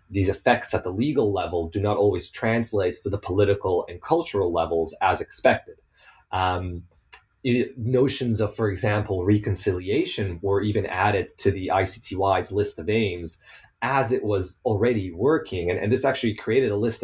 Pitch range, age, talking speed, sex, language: 95-115 Hz, 30-49, 160 wpm, male, English